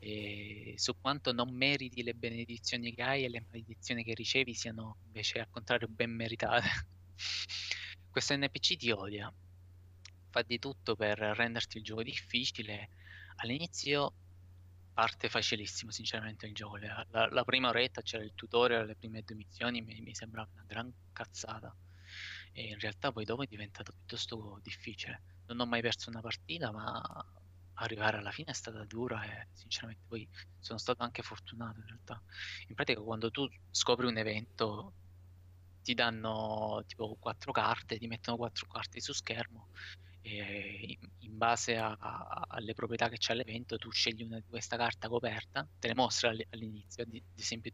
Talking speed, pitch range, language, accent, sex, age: 160 wpm, 100-120 Hz, Italian, native, male, 20-39